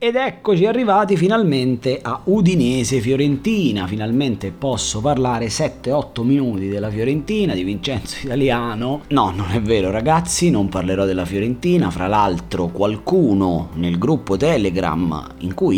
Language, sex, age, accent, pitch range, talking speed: Italian, male, 30-49, native, 90-135 Hz, 130 wpm